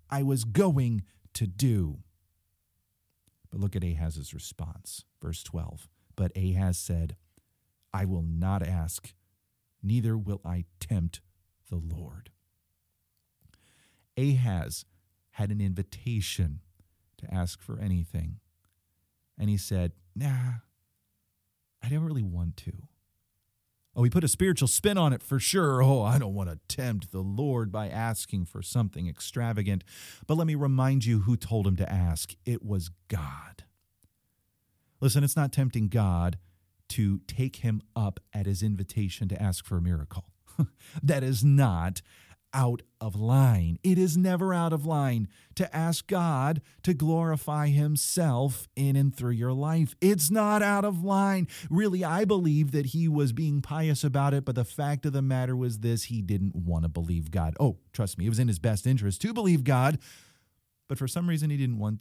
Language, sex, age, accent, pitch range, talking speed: English, male, 40-59, American, 90-135 Hz, 160 wpm